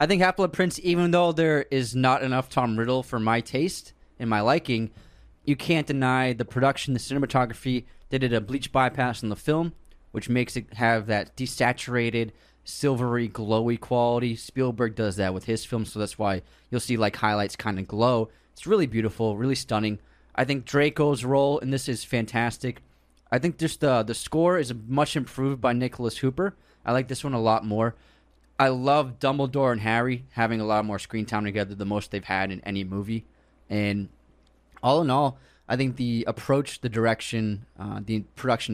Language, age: English, 20-39